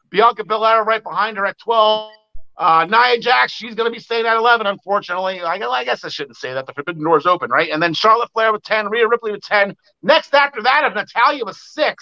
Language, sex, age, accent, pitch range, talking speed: English, male, 50-69, American, 185-235 Hz, 235 wpm